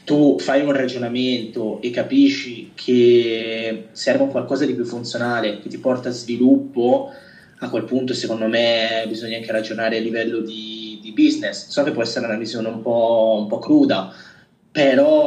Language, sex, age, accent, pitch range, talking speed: Italian, male, 20-39, native, 120-150 Hz, 165 wpm